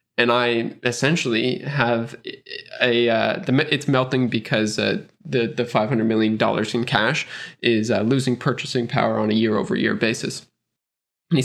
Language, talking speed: English, 145 wpm